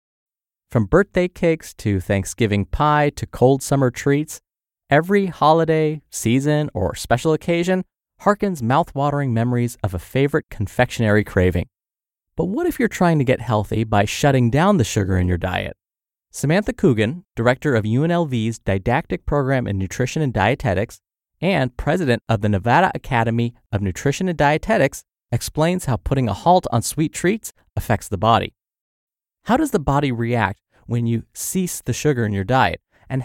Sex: male